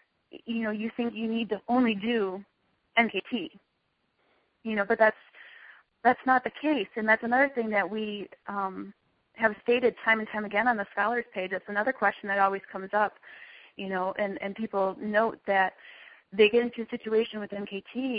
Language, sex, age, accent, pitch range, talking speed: English, female, 30-49, American, 200-230 Hz, 185 wpm